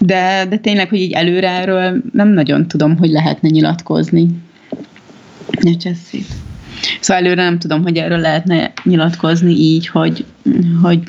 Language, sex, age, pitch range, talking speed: Hungarian, female, 30-49, 160-195 Hz, 135 wpm